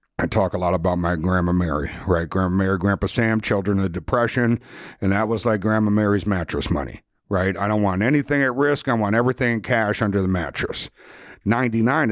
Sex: male